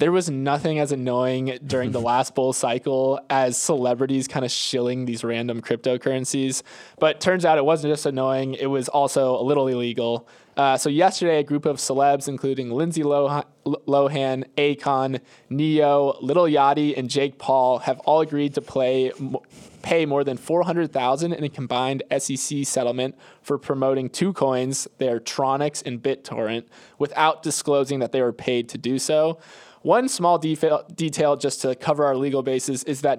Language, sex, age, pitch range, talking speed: English, male, 20-39, 130-155 Hz, 170 wpm